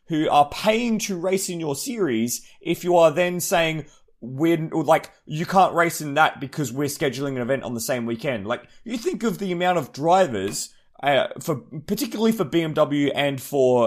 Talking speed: 195 wpm